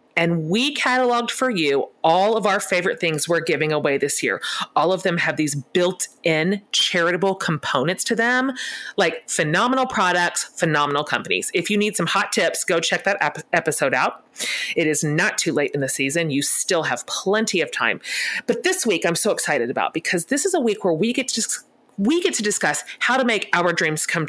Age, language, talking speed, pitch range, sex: 30-49, English, 205 wpm, 165-230 Hz, female